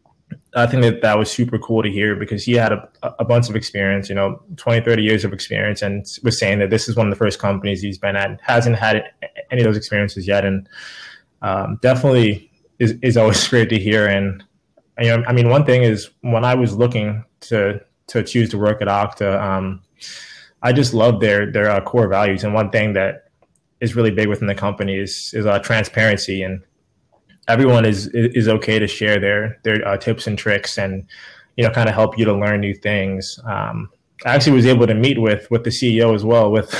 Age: 20-39